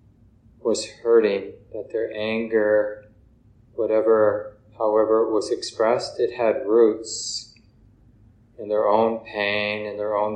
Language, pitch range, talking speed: English, 105-115 Hz, 115 wpm